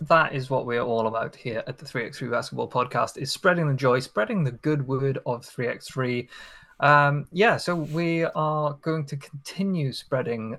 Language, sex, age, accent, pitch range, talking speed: English, male, 20-39, British, 125-150 Hz, 175 wpm